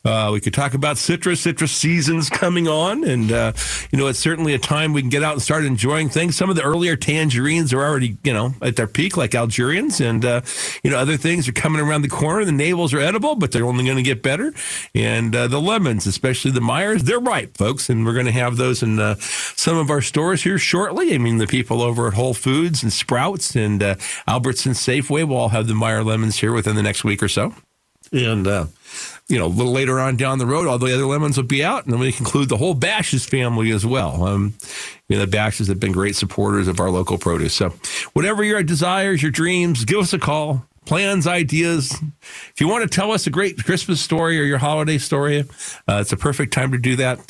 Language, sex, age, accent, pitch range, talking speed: English, male, 50-69, American, 115-160 Hz, 240 wpm